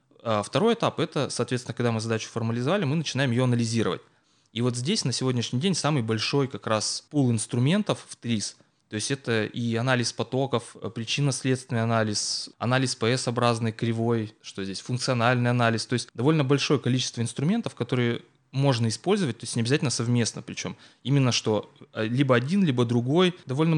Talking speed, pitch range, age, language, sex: 160 wpm, 115-140 Hz, 20-39, Russian, male